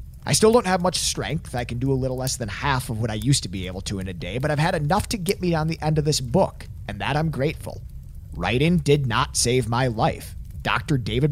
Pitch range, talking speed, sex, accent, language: 105-155 Hz, 265 wpm, male, American, English